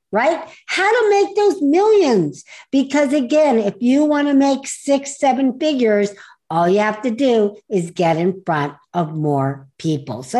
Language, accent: English, American